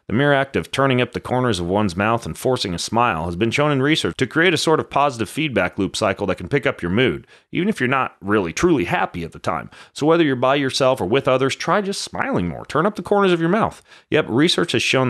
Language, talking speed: English, 270 wpm